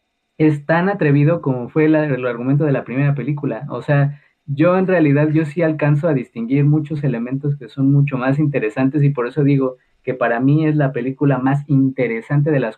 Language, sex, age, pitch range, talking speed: Spanish, male, 20-39, 130-150 Hz, 200 wpm